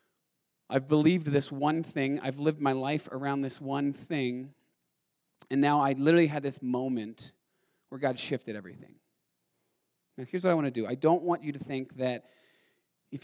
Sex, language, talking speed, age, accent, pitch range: male, English, 175 wpm, 30-49, American, 135-185 Hz